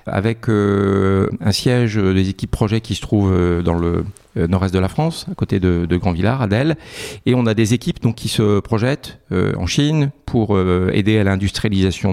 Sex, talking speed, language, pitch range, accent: male, 195 wpm, French, 100-125 Hz, French